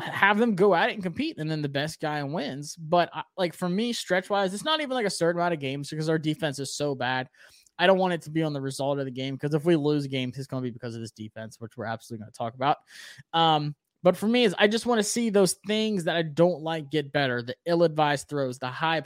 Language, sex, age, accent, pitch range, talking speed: English, male, 20-39, American, 140-185 Hz, 280 wpm